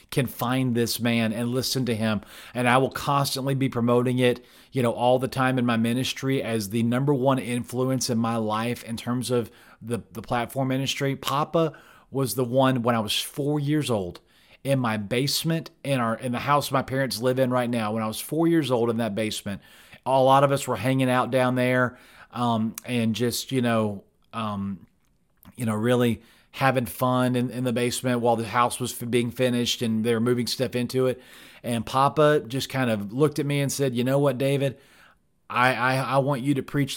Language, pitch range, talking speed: English, 115-135 Hz, 210 wpm